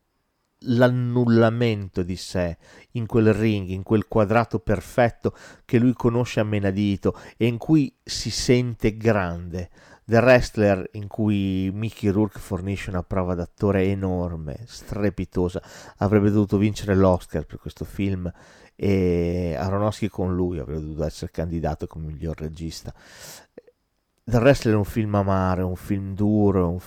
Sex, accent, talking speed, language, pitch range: male, native, 140 wpm, Italian, 90-115 Hz